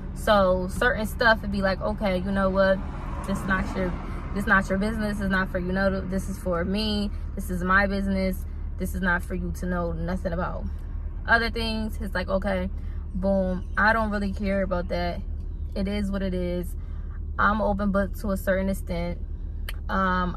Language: English